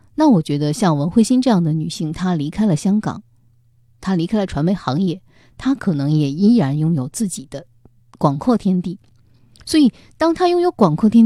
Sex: female